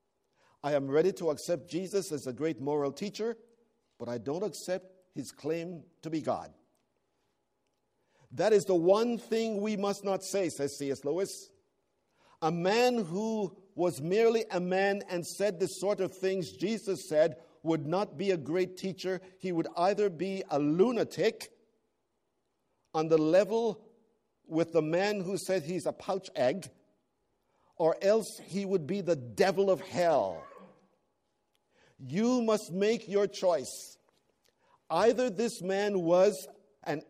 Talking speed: 145 wpm